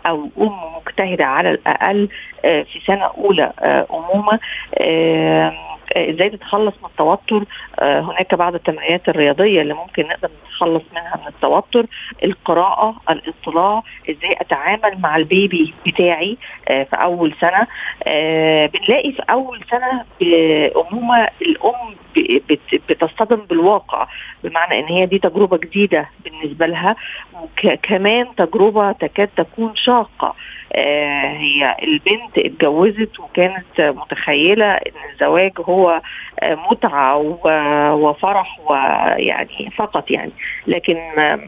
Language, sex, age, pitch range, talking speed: Arabic, female, 50-69, 160-215 Hz, 105 wpm